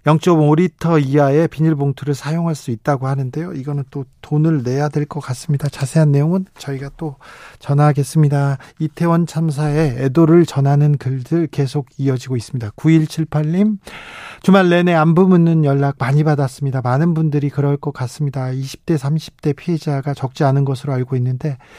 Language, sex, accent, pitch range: Korean, male, native, 135-160 Hz